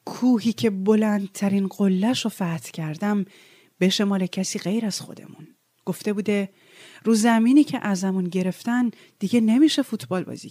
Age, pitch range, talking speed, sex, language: 30-49, 195-235 Hz, 135 wpm, female, Persian